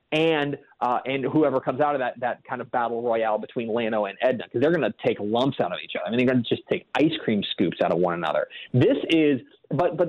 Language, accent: English, American